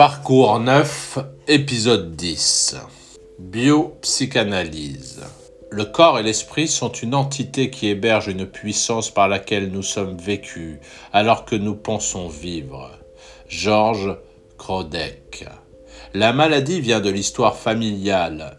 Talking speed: 110 wpm